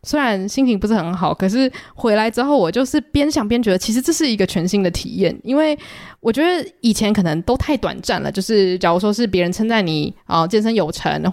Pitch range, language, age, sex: 180-240 Hz, Chinese, 20-39, female